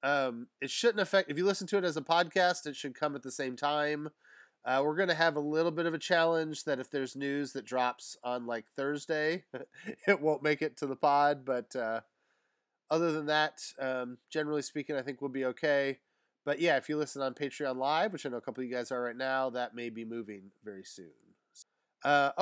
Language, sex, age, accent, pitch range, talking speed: English, male, 30-49, American, 125-155 Hz, 225 wpm